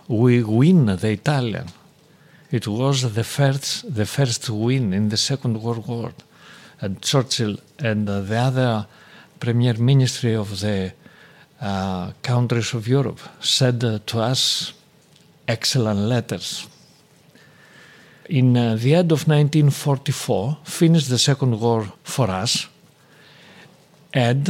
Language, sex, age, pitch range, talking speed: English, male, 50-69, 120-155 Hz, 120 wpm